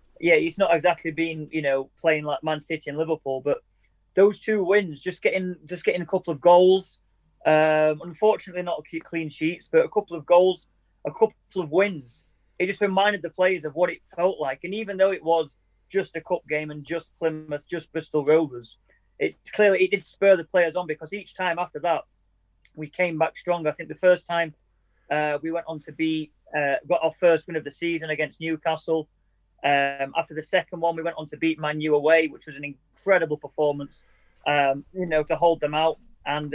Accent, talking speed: British, 210 wpm